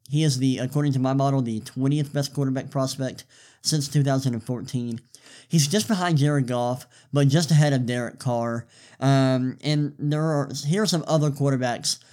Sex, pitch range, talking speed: male, 125-145 Hz, 170 wpm